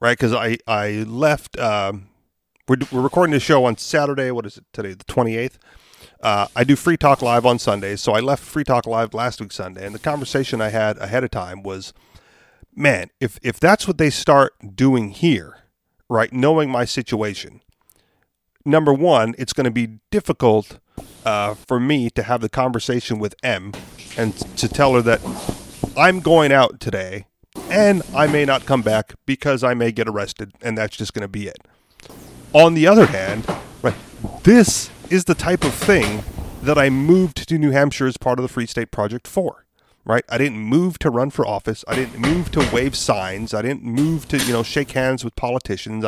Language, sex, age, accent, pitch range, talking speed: English, male, 40-59, American, 110-145 Hz, 195 wpm